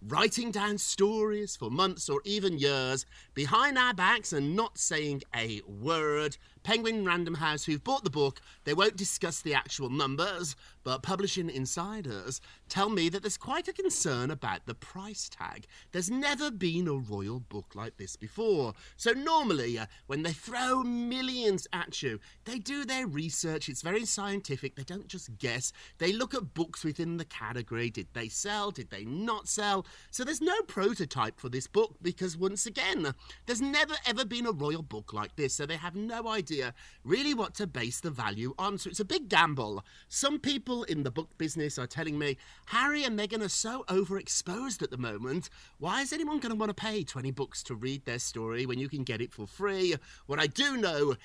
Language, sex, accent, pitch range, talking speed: English, male, British, 135-210 Hz, 195 wpm